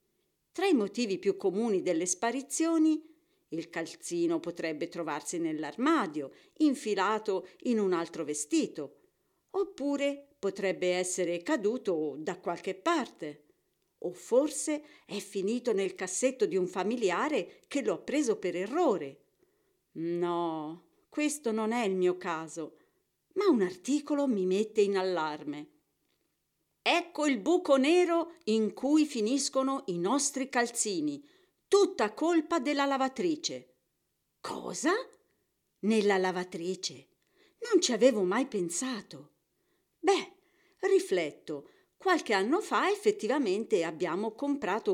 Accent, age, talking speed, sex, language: native, 50-69, 110 wpm, female, Italian